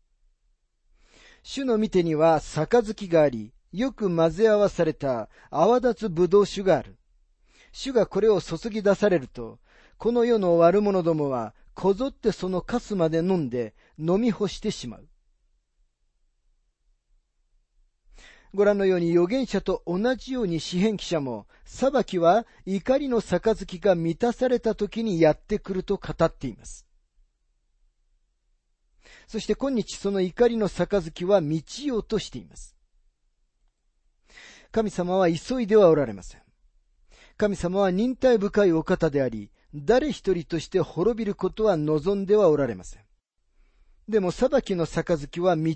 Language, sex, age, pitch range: Japanese, male, 40-59, 145-210 Hz